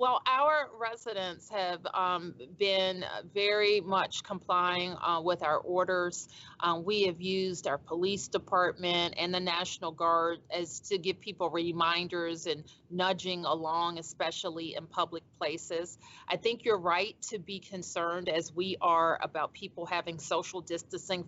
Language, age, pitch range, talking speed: English, 40-59, 175-205 Hz, 145 wpm